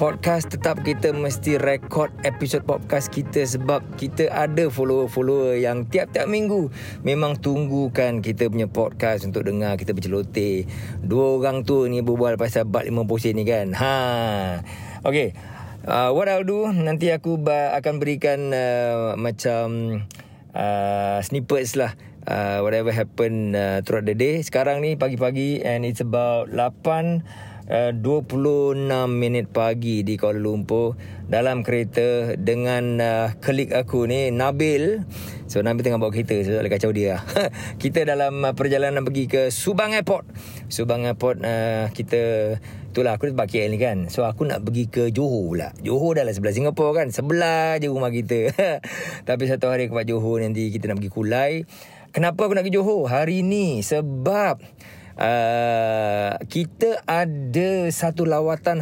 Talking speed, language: 150 wpm, Malay